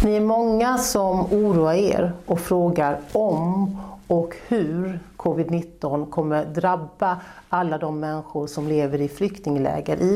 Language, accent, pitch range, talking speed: Swedish, native, 155-195 Hz, 130 wpm